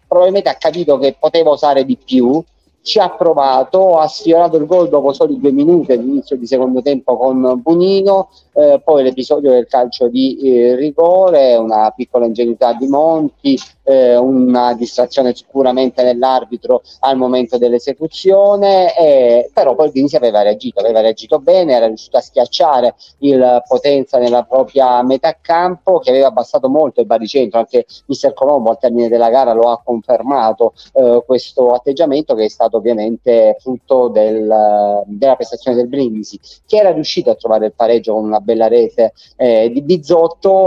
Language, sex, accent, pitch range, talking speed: Italian, male, native, 120-150 Hz, 160 wpm